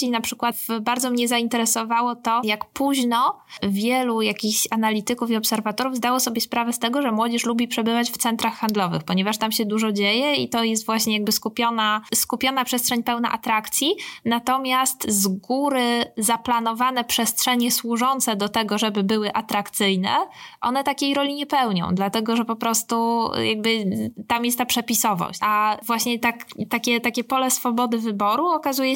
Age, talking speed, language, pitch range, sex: 10-29, 155 wpm, Polish, 210-245 Hz, female